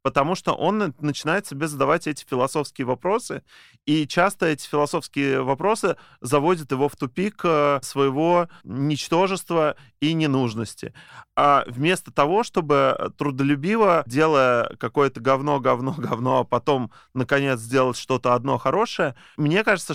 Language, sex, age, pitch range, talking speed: Russian, male, 20-39, 130-165 Hz, 115 wpm